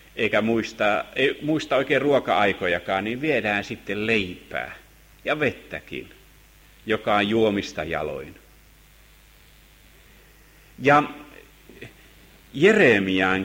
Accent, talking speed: native, 75 wpm